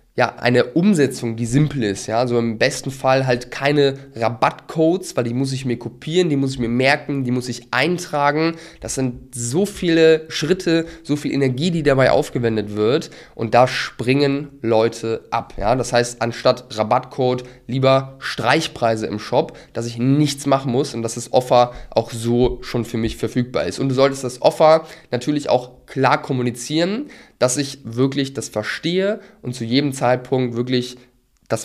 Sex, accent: male, German